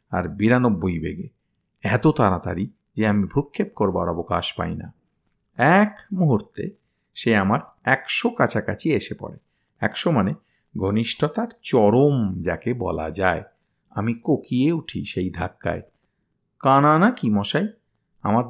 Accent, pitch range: native, 110-175 Hz